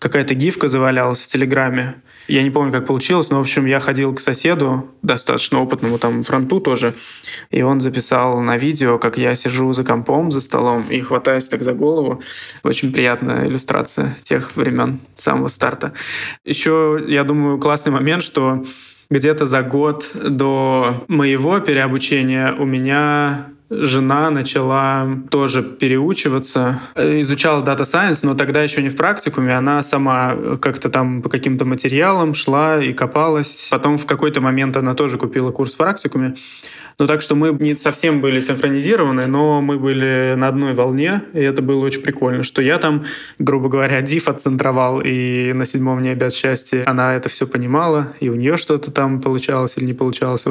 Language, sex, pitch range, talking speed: Russian, male, 130-145 Hz, 165 wpm